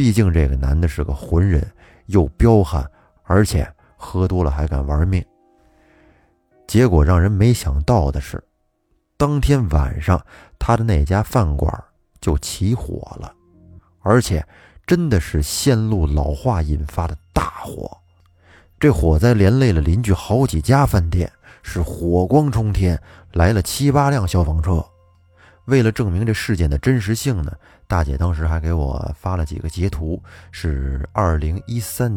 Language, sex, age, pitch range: Chinese, male, 30-49, 80-110 Hz